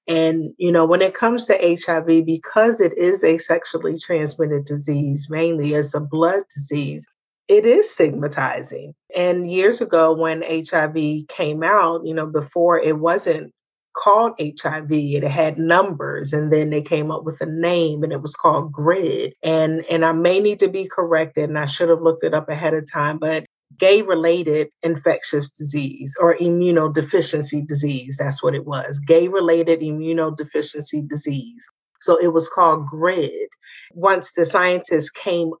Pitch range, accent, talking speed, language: 150-180 Hz, American, 160 wpm, English